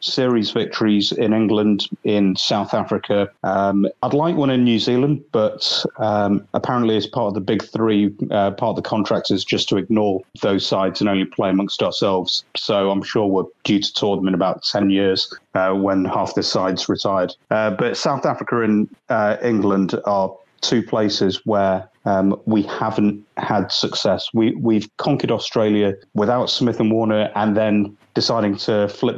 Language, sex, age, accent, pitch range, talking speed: English, male, 30-49, British, 100-115 Hz, 175 wpm